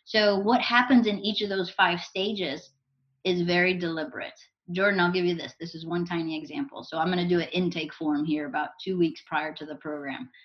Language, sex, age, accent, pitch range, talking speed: English, female, 20-39, American, 175-225 Hz, 210 wpm